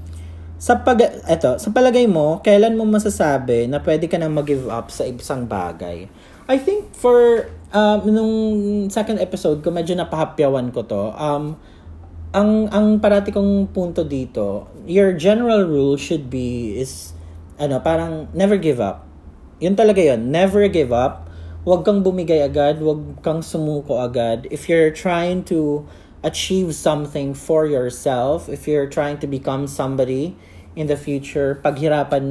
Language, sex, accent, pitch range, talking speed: English, male, Filipino, 130-175 Hz, 150 wpm